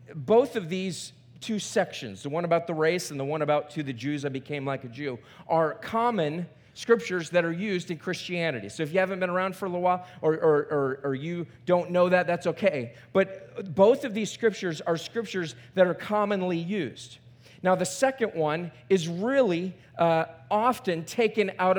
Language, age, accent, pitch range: English, 40-59, American, 160-230 Hz